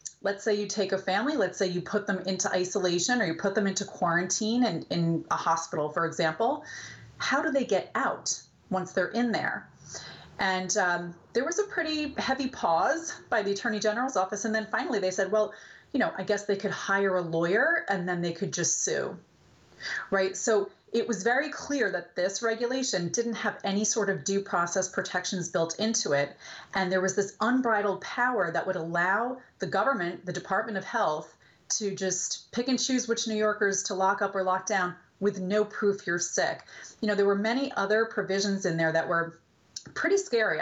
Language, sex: English, female